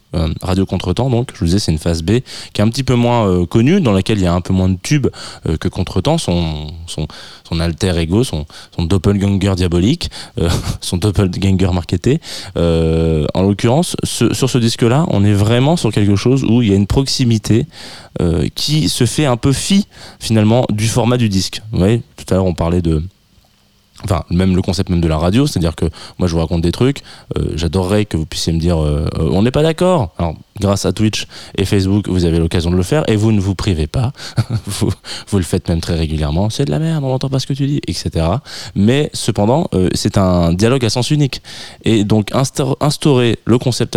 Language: French